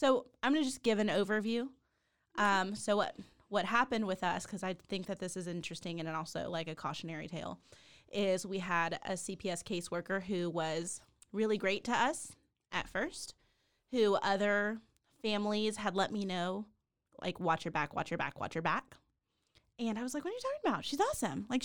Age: 20-39